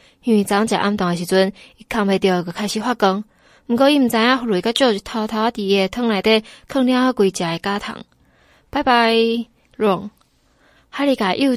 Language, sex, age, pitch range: Chinese, female, 20-39, 190-240 Hz